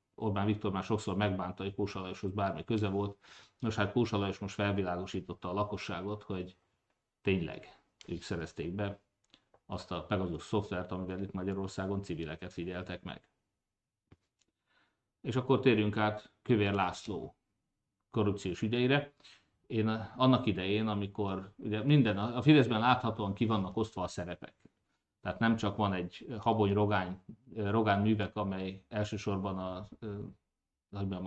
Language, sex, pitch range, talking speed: Hungarian, male, 95-110 Hz, 130 wpm